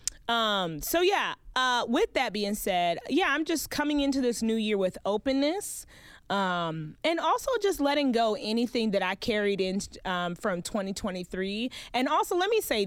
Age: 30-49